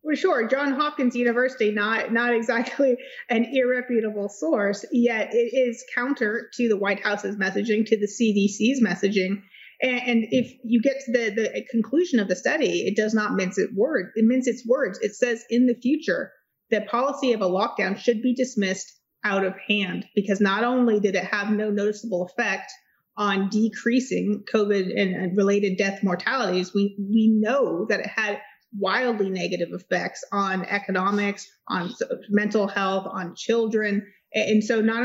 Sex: female